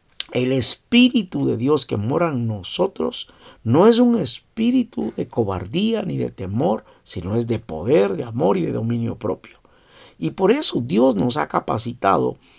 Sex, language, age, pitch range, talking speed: male, Spanish, 50-69, 115-170 Hz, 160 wpm